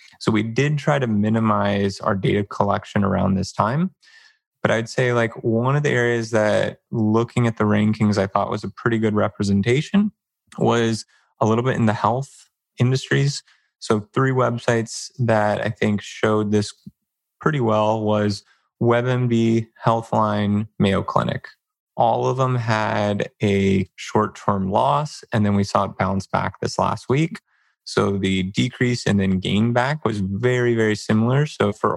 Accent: American